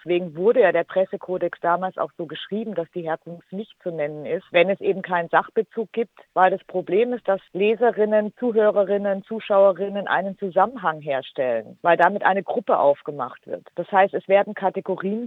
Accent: German